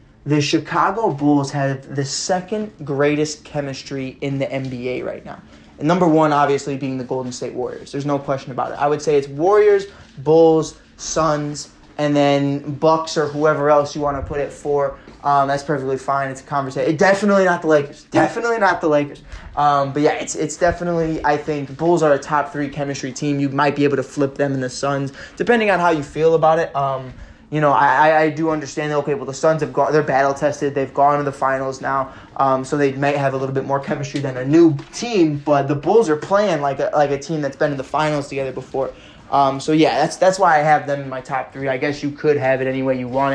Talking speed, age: 235 wpm, 20-39